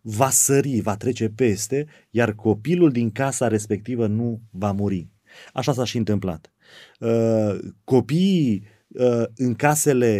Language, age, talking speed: Romanian, 30-49, 120 wpm